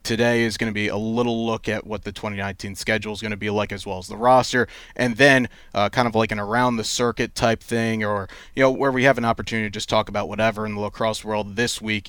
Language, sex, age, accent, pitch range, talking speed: English, male, 30-49, American, 105-125 Hz, 270 wpm